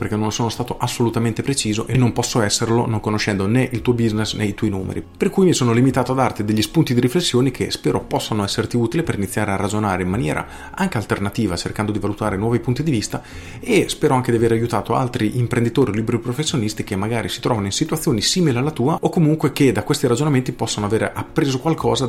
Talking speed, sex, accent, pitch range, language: 220 wpm, male, native, 105-130 Hz, Italian